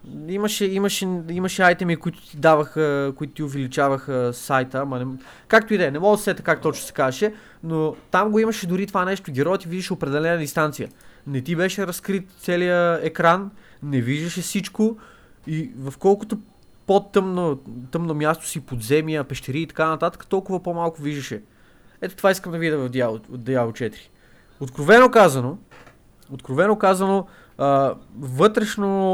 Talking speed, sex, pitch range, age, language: 155 wpm, male, 140-185 Hz, 20-39, Bulgarian